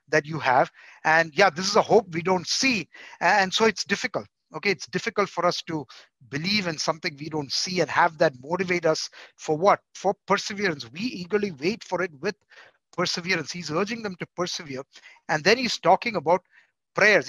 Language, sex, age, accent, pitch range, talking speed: English, male, 50-69, Indian, 155-195 Hz, 190 wpm